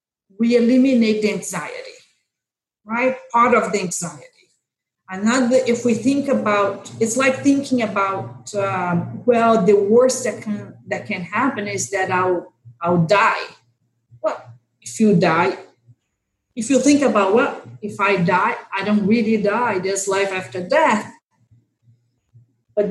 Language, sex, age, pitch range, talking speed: English, female, 40-59, 175-230 Hz, 140 wpm